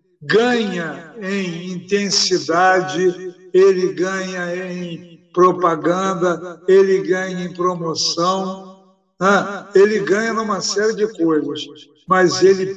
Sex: male